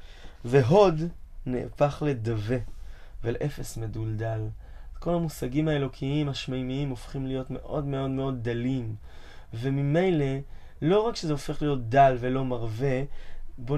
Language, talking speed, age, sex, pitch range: Hebrew, 110 wpm, 20-39, male, 130-165 Hz